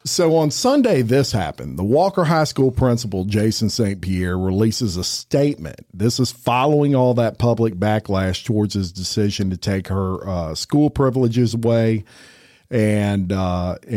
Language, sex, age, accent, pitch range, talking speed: English, male, 50-69, American, 100-125 Hz, 150 wpm